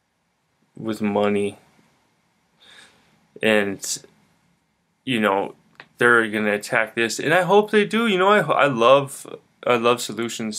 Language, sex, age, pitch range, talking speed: English, male, 20-39, 110-120 Hz, 130 wpm